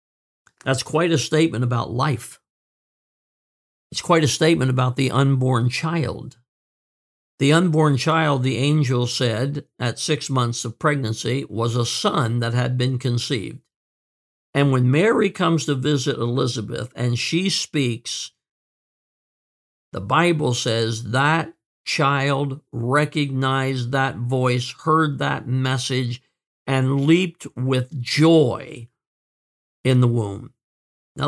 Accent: American